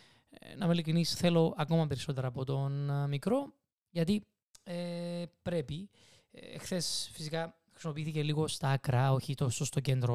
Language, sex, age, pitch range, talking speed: Greek, male, 20-39, 135-175 Hz, 130 wpm